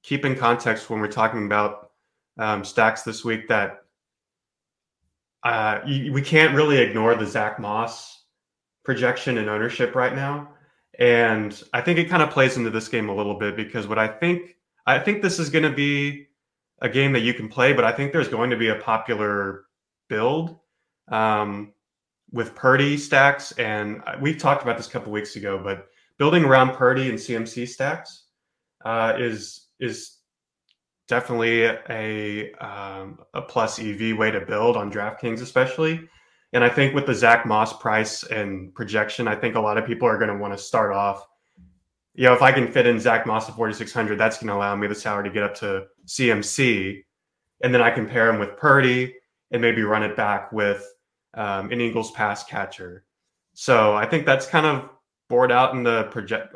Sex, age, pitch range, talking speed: male, 20-39, 105-135 Hz, 185 wpm